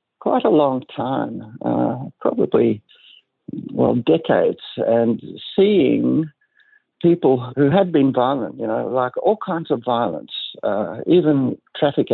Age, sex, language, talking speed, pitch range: 60-79, male, English, 125 wpm, 120-155 Hz